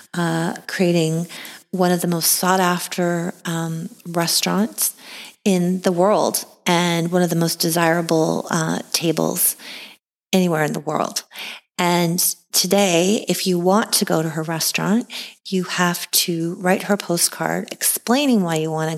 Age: 30-49